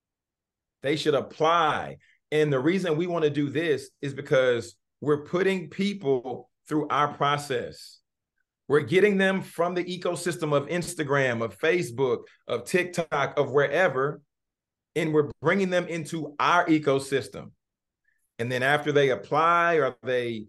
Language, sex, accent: English, male, American